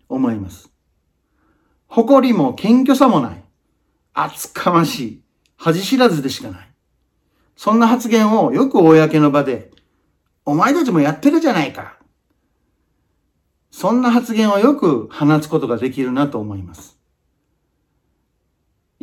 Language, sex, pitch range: Japanese, male, 140-225 Hz